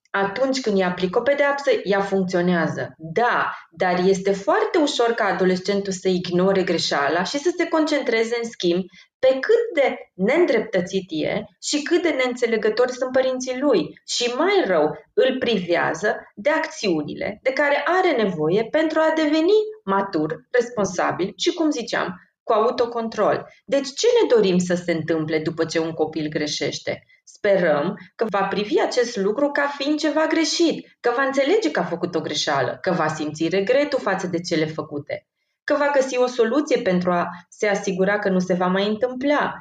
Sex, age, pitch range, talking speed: female, 30-49, 180-275 Hz, 165 wpm